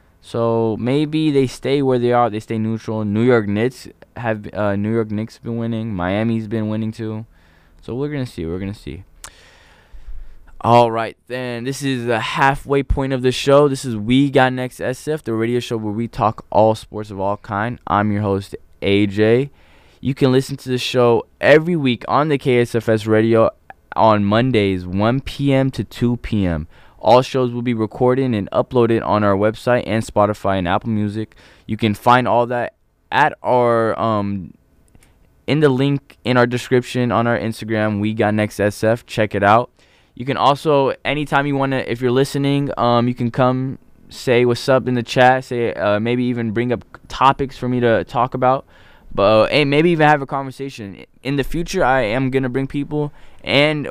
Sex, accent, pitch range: male, American, 105-130 Hz